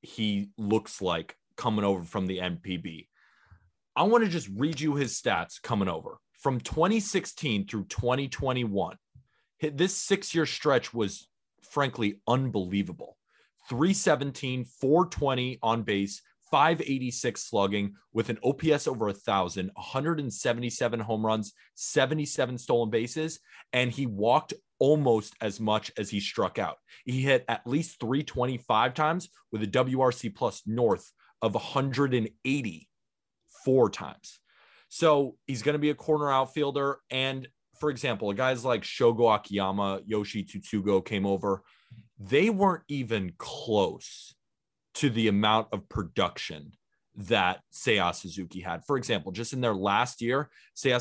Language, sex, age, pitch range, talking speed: English, male, 30-49, 105-140 Hz, 130 wpm